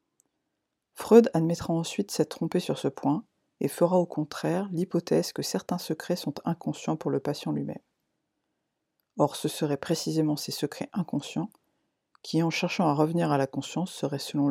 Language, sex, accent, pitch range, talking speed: French, female, French, 145-175 Hz, 160 wpm